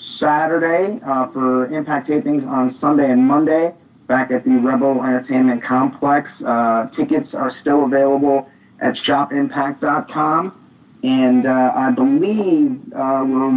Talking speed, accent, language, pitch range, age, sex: 125 wpm, American, English, 130-155 Hz, 40-59, male